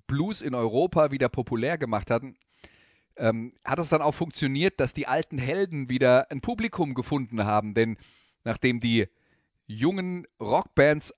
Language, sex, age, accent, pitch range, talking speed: German, male, 30-49, German, 115-140 Hz, 145 wpm